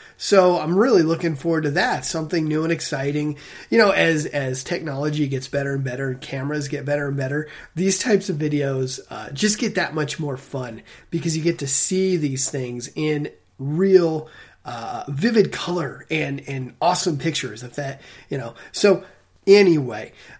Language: English